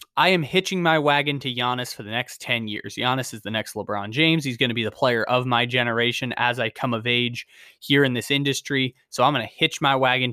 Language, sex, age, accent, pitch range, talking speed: English, male, 20-39, American, 120-145 Hz, 250 wpm